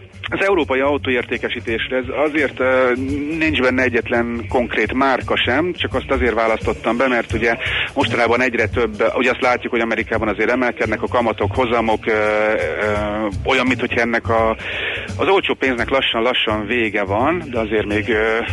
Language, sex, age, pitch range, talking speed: Hungarian, male, 40-59, 105-120 Hz, 155 wpm